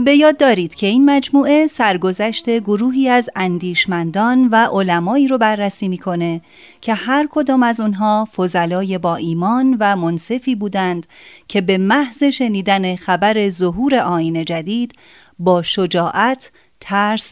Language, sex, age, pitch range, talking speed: Persian, female, 30-49, 180-245 Hz, 130 wpm